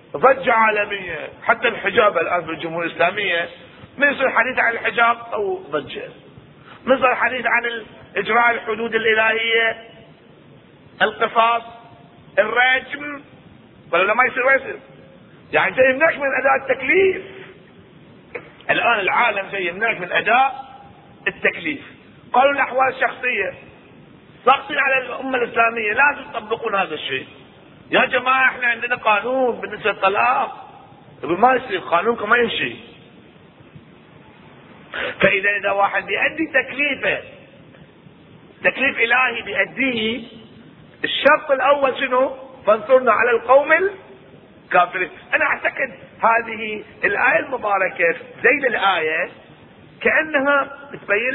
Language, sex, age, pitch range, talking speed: Arabic, male, 40-59, 210-265 Hz, 100 wpm